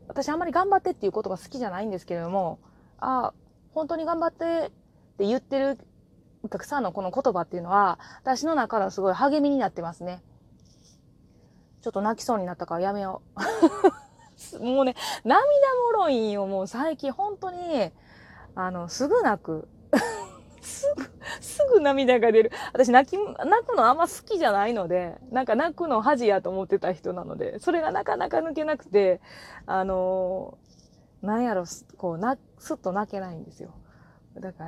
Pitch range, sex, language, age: 185-275 Hz, female, Japanese, 20-39